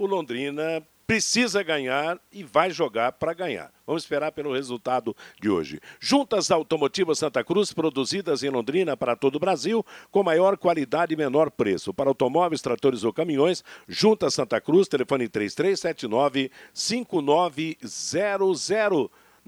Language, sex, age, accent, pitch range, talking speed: Portuguese, male, 60-79, Brazilian, 140-185 Hz, 130 wpm